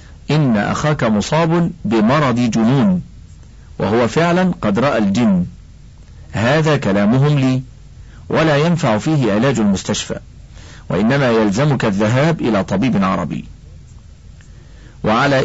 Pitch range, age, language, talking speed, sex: 110-155 Hz, 50-69, Arabic, 95 wpm, male